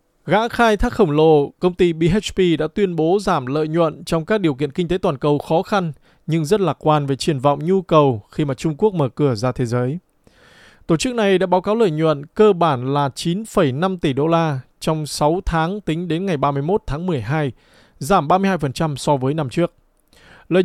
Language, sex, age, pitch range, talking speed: Vietnamese, male, 20-39, 150-190 Hz, 210 wpm